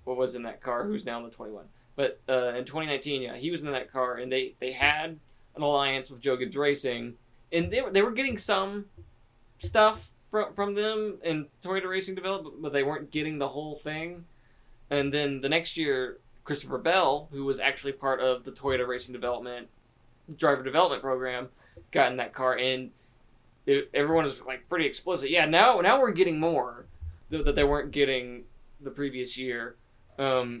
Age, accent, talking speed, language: 20-39, American, 190 wpm, English